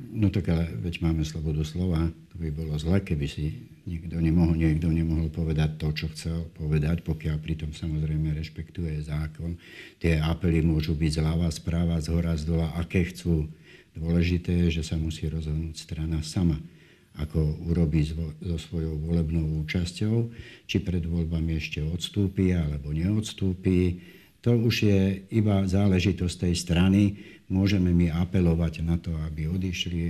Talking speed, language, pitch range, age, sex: 145 wpm, Slovak, 80-95 Hz, 60-79, male